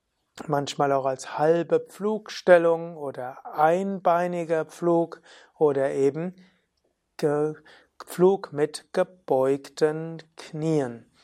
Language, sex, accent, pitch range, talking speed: German, male, German, 140-175 Hz, 75 wpm